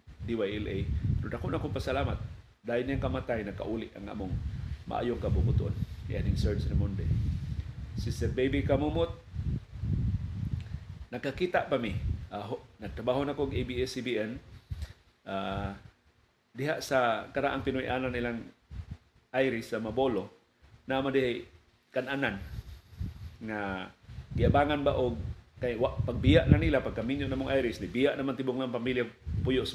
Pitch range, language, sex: 110-140 Hz, Filipino, male